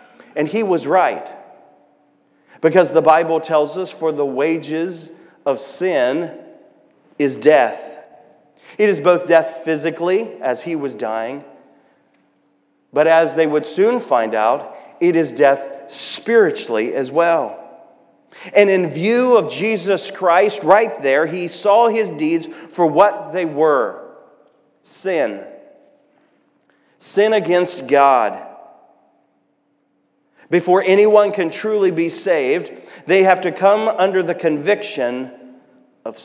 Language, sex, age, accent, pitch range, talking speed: English, male, 40-59, American, 165-220 Hz, 120 wpm